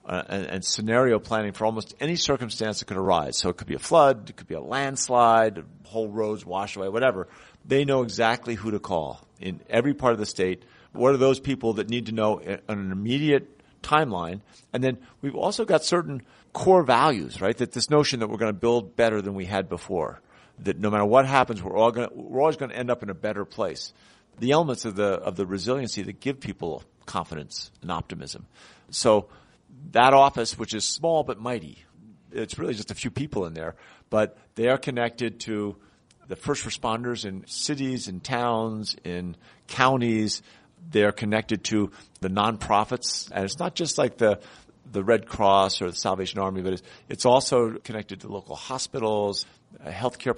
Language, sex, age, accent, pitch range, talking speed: English, male, 50-69, American, 100-130 Hz, 195 wpm